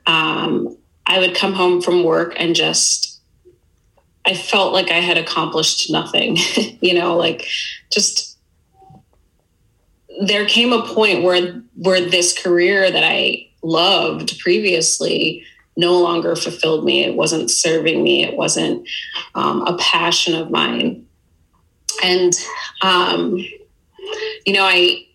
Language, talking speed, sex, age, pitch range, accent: English, 125 wpm, female, 30-49, 155-190 Hz, American